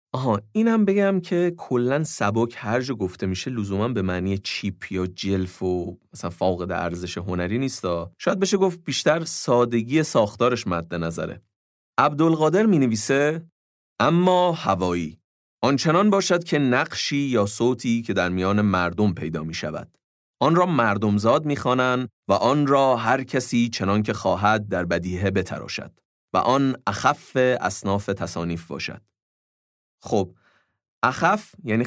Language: Persian